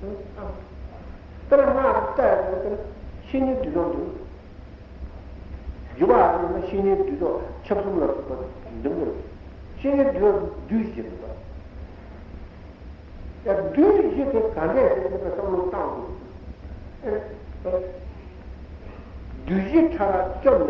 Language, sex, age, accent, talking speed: Italian, male, 60-79, Indian, 60 wpm